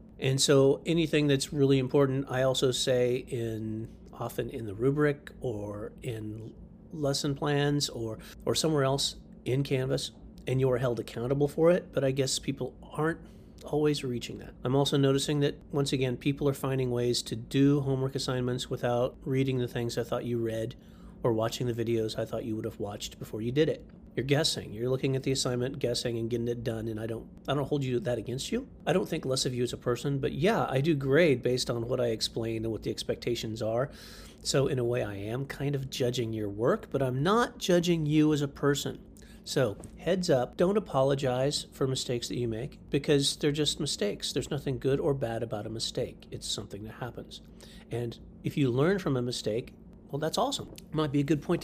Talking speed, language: 210 wpm, English